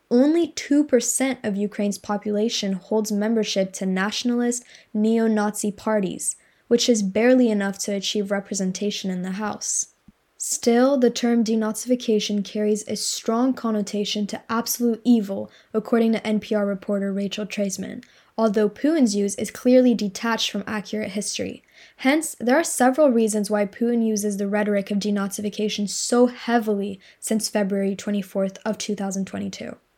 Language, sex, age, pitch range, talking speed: English, female, 10-29, 205-235 Hz, 130 wpm